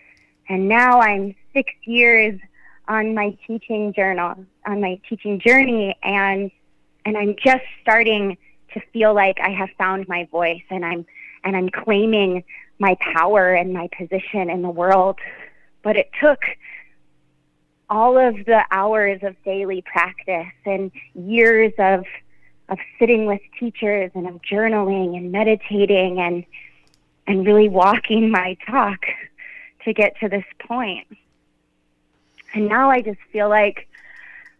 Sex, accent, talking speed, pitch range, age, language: female, American, 135 wpm, 185-215 Hz, 20-39, English